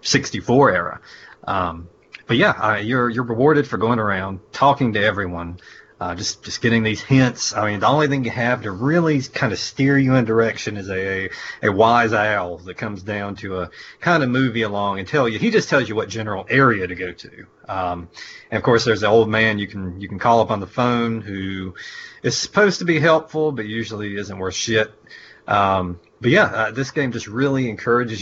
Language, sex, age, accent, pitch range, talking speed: English, male, 30-49, American, 95-120 Hz, 215 wpm